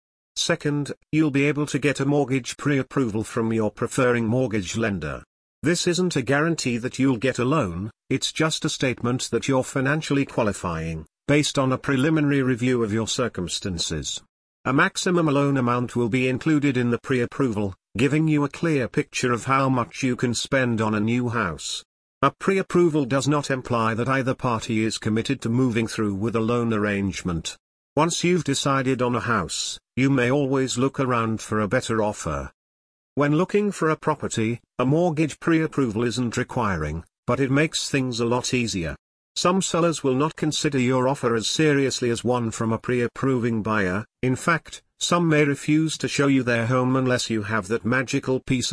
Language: English